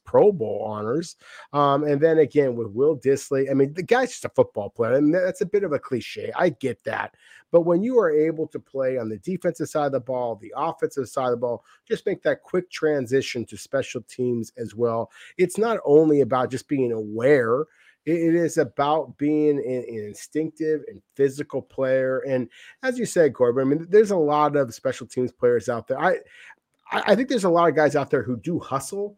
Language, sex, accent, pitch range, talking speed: English, male, American, 125-165 Hz, 215 wpm